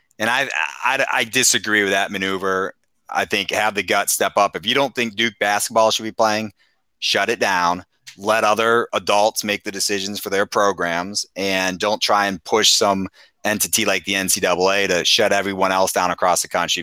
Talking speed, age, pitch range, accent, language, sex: 195 wpm, 30-49, 90-105 Hz, American, English, male